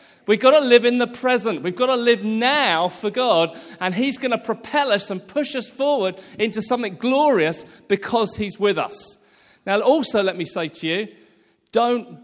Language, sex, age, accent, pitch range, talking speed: English, male, 40-59, British, 175-230 Hz, 190 wpm